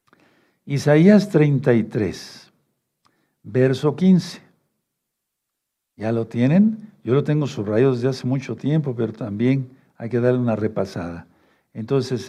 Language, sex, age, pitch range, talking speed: Spanish, male, 60-79, 120-155 Hz, 110 wpm